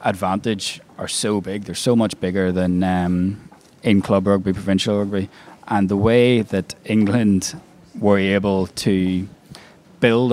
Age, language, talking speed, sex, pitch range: 20-39, English, 135 wpm, male, 95-105 Hz